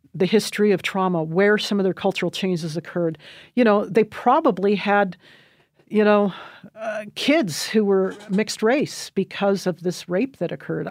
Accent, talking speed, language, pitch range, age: American, 165 wpm, English, 175-215 Hz, 50-69